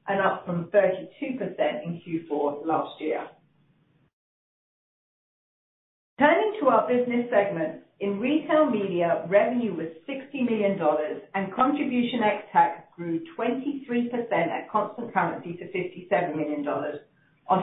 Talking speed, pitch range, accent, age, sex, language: 110 wpm, 165-230 Hz, British, 40-59, female, English